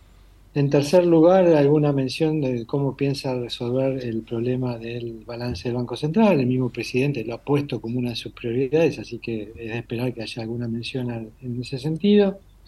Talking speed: 185 wpm